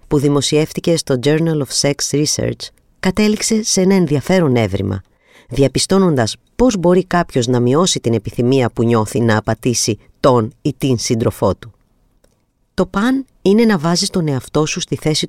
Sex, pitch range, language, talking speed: female, 125-180 Hz, Greek, 155 wpm